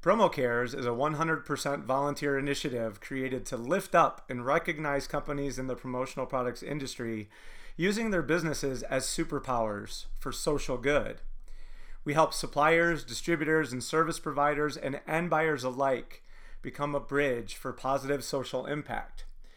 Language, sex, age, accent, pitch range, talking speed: English, male, 30-49, American, 130-160 Hz, 135 wpm